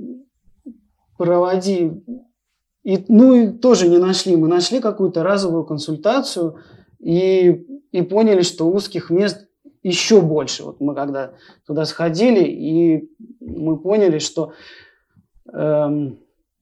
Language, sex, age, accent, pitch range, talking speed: Russian, male, 20-39, native, 150-195 Hz, 105 wpm